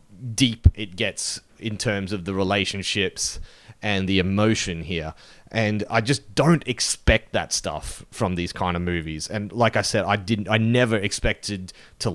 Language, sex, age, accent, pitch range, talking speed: English, male, 30-49, Australian, 95-125 Hz, 170 wpm